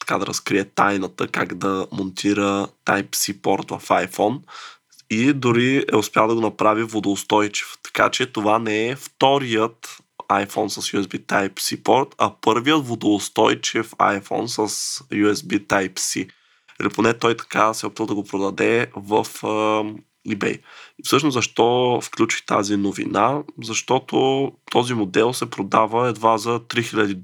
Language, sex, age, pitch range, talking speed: Bulgarian, male, 20-39, 105-115 Hz, 135 wpm